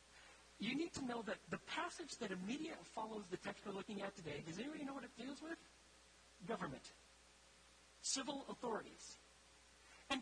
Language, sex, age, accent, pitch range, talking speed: English, male, 40-59, American, 185-255 Hz, 160 wpm